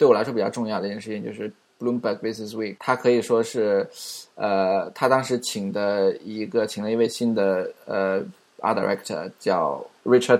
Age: 20-39